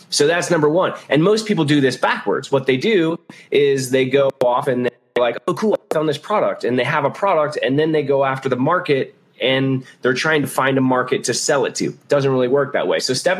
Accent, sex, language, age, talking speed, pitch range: American, male, English, 20-39, 255 wpm, 125-150 Hz